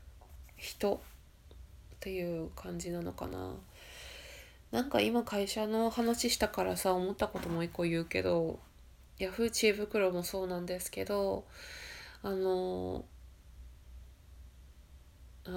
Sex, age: female, 20-39